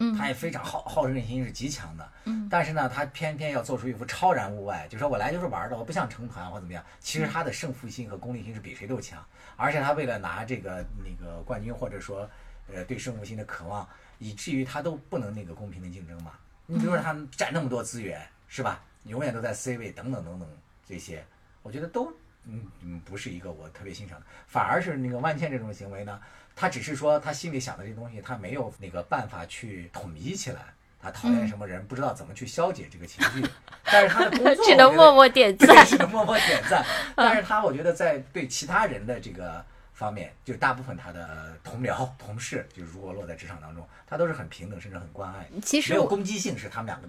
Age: 50-69